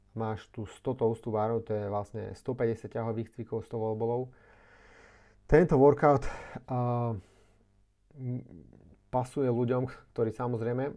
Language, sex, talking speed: Slovak, male, 110 wpm